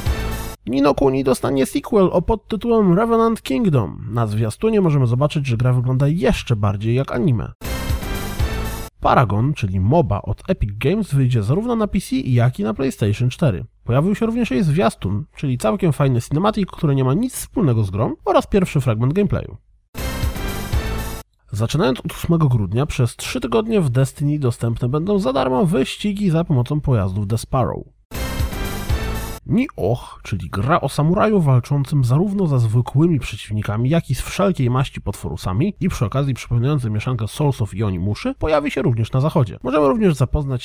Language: Polish